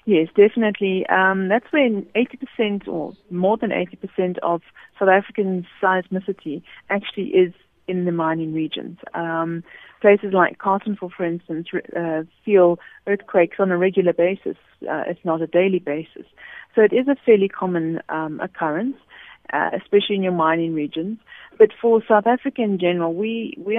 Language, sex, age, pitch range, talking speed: English, female, 30-49, 170-205 Hz, 155 wpm